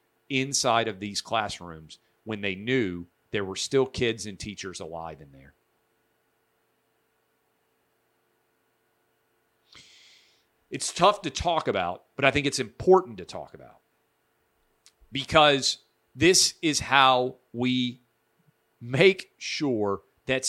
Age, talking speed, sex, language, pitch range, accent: 40-59, 110 wpm, male, English, 105-140 Hz, American